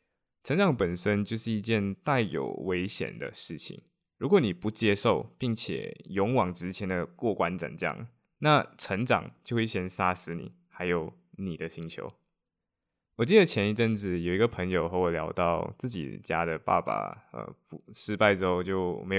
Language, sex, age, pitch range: Chinese, male, 20-39, 85-110 Hz